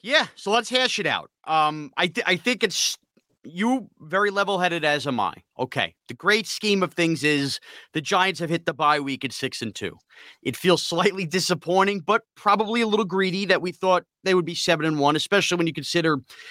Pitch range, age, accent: 150-205 Hz, 30-49, American